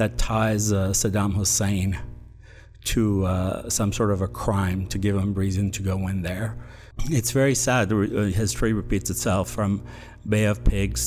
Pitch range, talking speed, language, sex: 100-115 Hz, 165 wpm, English, male